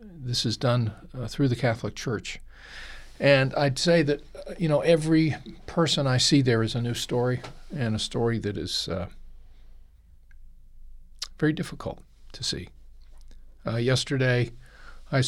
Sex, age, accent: male, 50-69, American